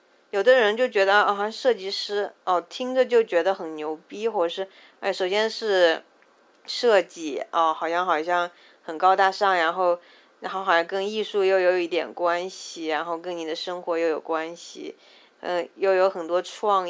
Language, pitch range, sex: Chinese, 170-205 Hz, female